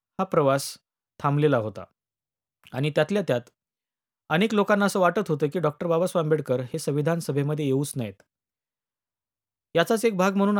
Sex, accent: male, native